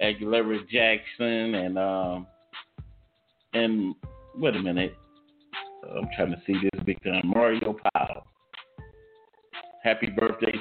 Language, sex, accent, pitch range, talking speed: English, male, American, 95-115 Hz, 105 wpm